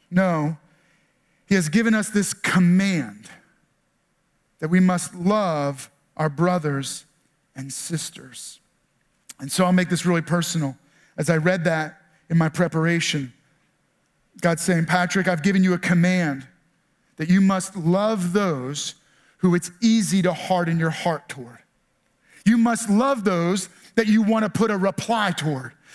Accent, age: American, 40-59